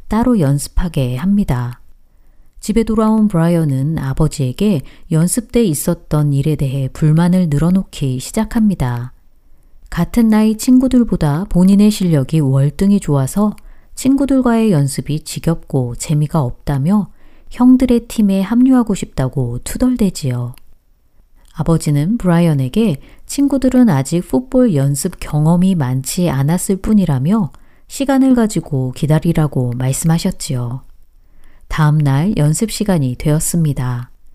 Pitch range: 140-215 Hz